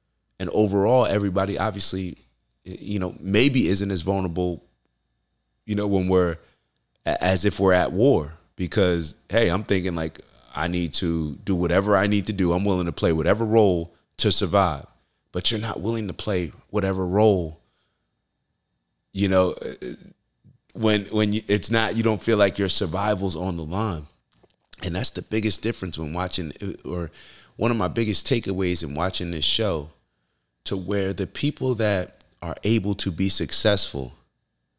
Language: English